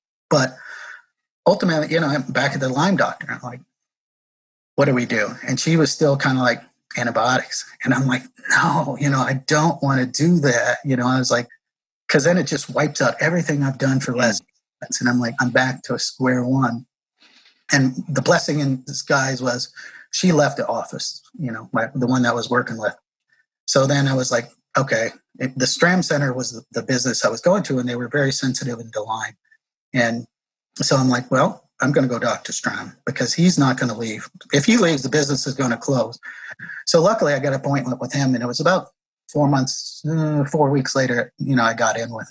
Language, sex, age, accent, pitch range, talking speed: English, male, 30-49, American, 125-145 Hz, 220 wpm